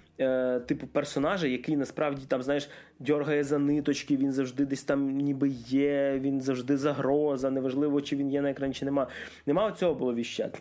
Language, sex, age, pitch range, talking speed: Russian, male, 20-39, 130-160 Hz, 165 wpm